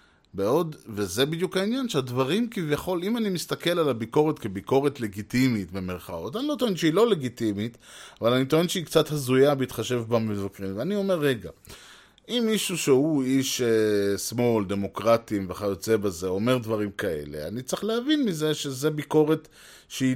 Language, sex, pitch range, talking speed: Hebrew, male, 110-150 Hz, 150 wpm